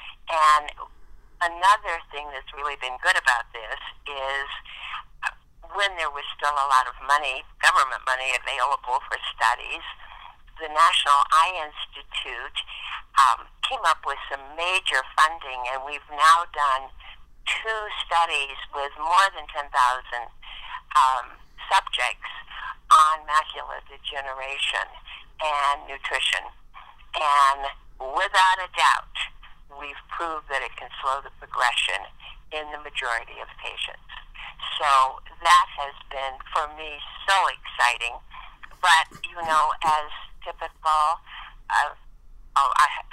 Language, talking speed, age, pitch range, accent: English, 115 wpm, 50-69, 140-165 Hz, American